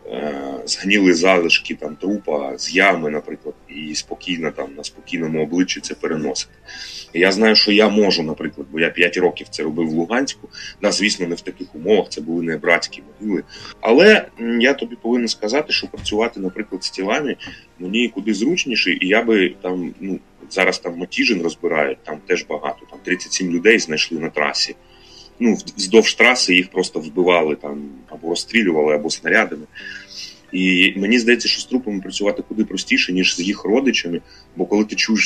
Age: 30-49